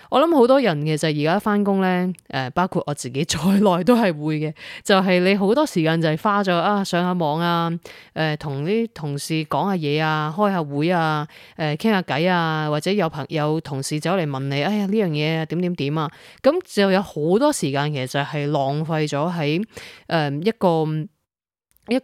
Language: Chinese